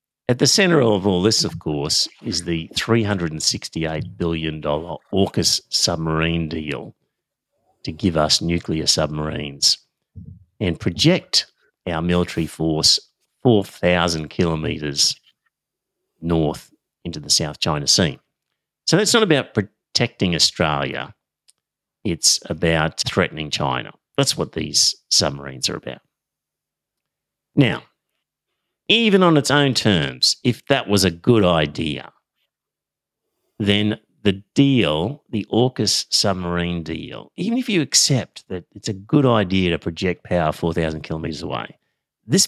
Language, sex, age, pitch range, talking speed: English, male, 50-69, 80-110 Hz, 120 wpm